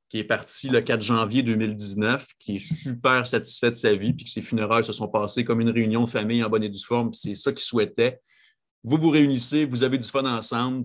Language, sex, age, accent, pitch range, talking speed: French, male, 30-49, Canadian, 100-120 Hz, 245 wpm